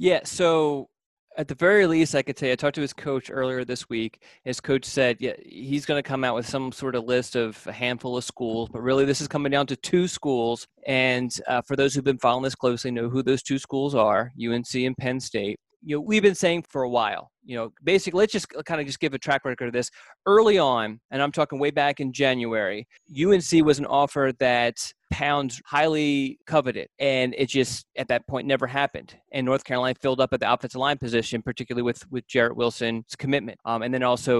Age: 30-49